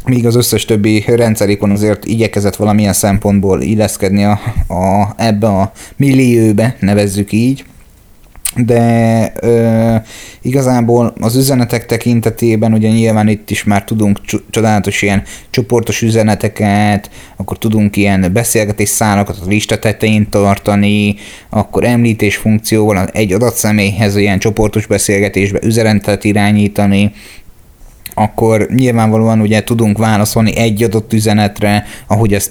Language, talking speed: Hungarian, 115 wpm